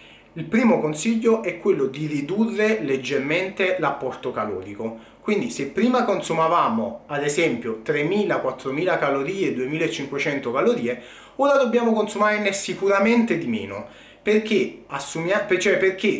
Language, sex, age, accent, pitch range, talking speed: Italian, male, 30-49, native, 135-210 Hz, 105 wpm